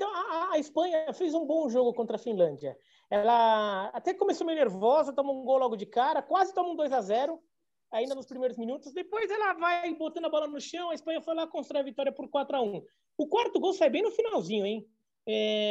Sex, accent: male, Brazilian